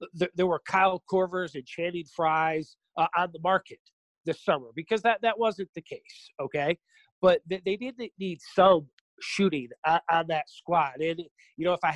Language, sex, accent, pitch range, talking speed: English, male, American, 155-190 Hz, 175 wpm